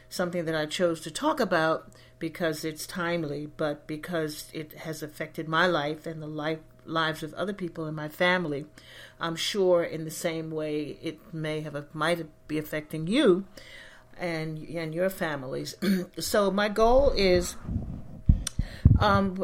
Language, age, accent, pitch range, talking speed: English, 50-69, American, 155-185 Hz, 155 wpm